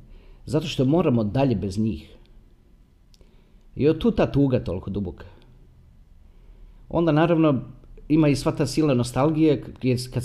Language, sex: Croatian, male